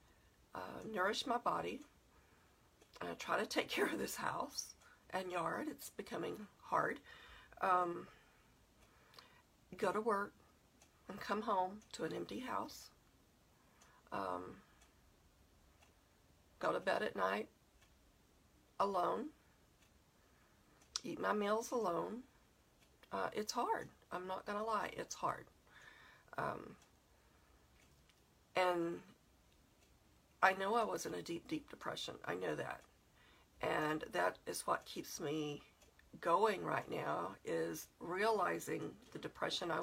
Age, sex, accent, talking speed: 50-69, female, American, 115 wpm